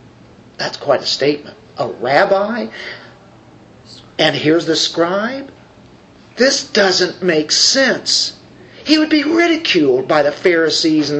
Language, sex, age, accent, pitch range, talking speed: English, male, 50-69, American, 180-290 Hz, 120 wpm